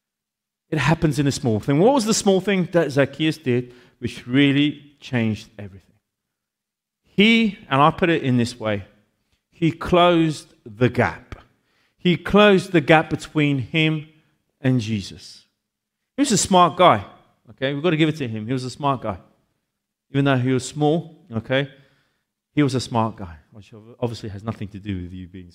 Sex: male